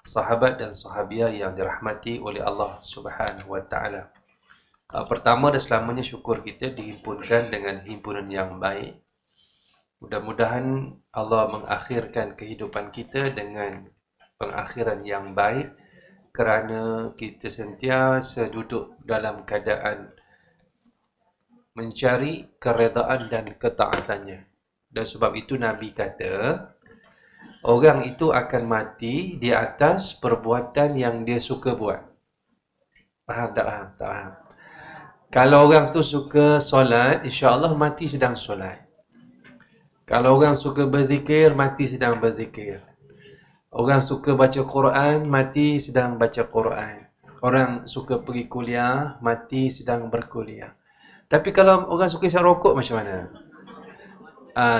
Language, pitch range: English, 110-140 Hz